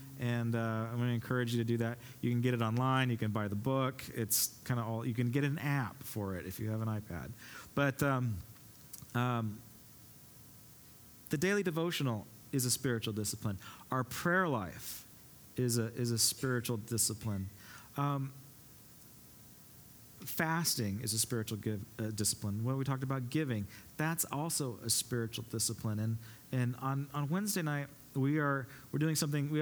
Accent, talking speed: American, 170 wpm